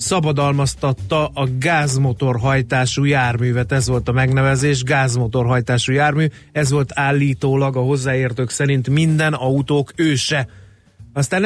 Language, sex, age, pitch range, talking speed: Hungarian, male, 30-49, 125-150 Hz, 105 wpm